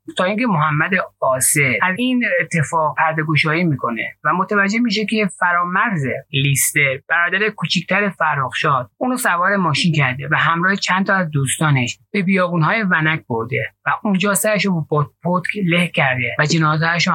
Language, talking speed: Persian, 155 wpm